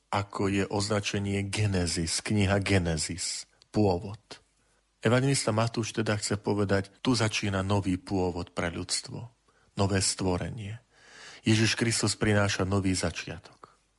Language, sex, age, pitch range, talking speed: Slovak, male, 40-59, 95-115 Hz, 105 wpm